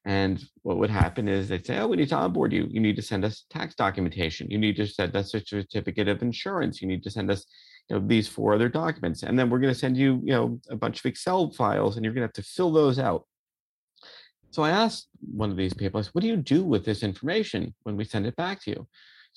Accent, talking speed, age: American, 270 wpm, 30-49